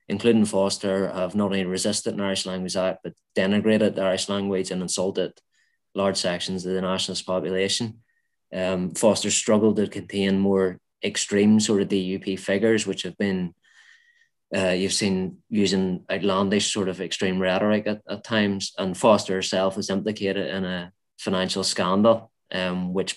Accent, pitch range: Irish, 95-105 Hz